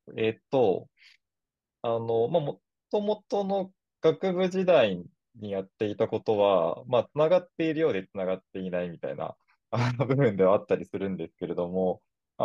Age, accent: 20-39, native